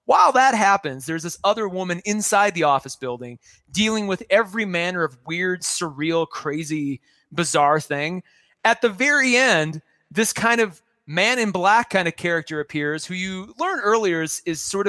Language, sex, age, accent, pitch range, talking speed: English, male, 30-49, American, 150-200 Hz, 170 wpm